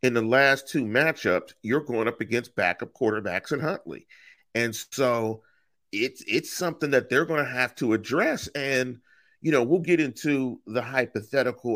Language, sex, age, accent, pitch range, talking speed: English, male, 40-59, American, 115-165 Hz, 170 wpm